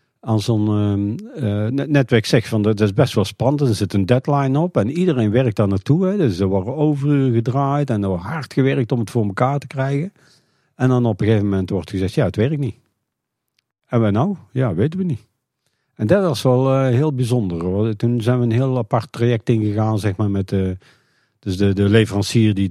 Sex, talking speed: male, 215 wpm